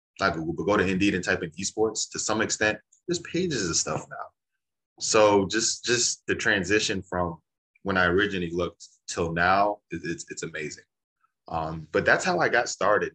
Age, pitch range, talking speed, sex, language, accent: 20-39, 85-105 Hz, 185 wpm, male, English, American